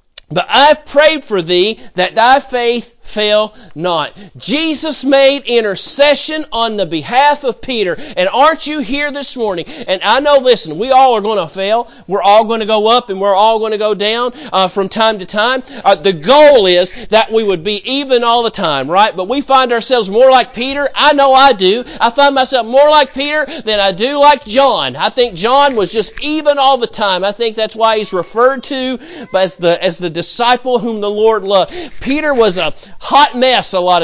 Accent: American